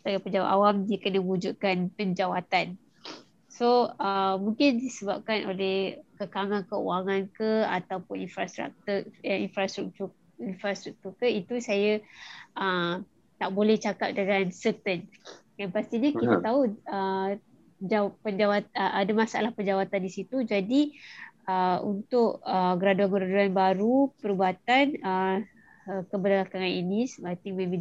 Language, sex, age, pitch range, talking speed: Malay, female, 20-39, 190-215 Hz, 115 wpm